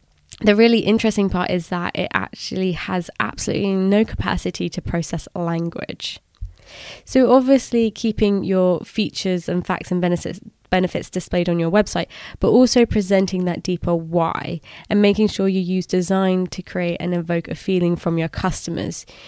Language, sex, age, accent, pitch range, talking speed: English, female, 20-39, British, 175-200 Hz, 155 wpm